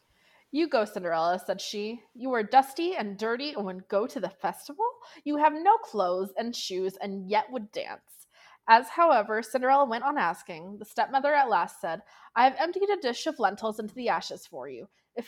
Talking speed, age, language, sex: 195 wpm, 20-39, English, female